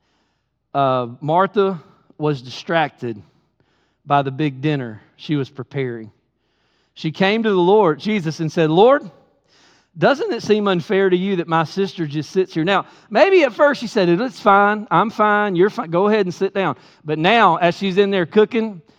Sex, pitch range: male, 160-225 Hz